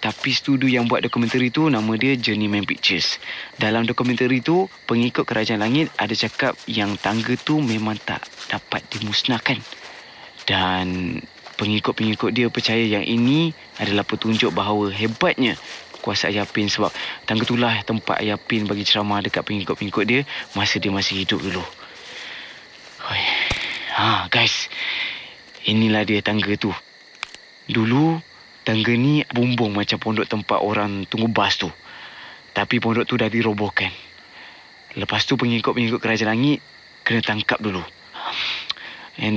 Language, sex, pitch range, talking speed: Malay, male, 105-120 Hz, 130 wpm